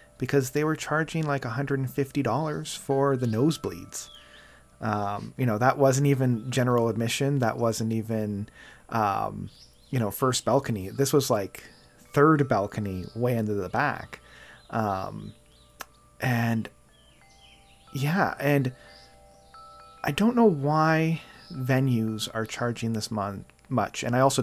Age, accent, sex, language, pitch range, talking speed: 30-49, American, male, English, 105-135 Hz, 125 wpm